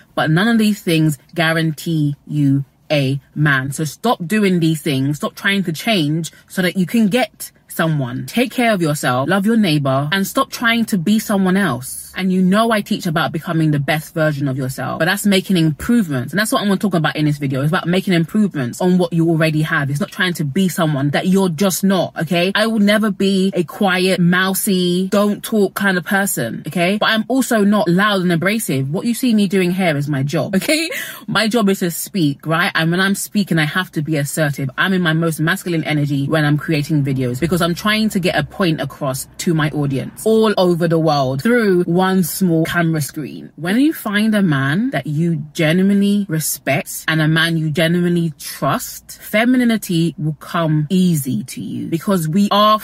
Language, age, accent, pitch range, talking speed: English, 20-39, British, 155-205 Hz, 210 wpm